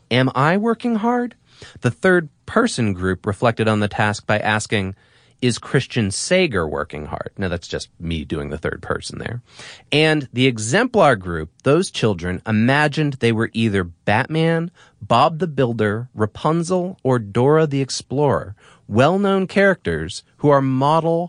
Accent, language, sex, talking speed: American, English, male, 140 wpm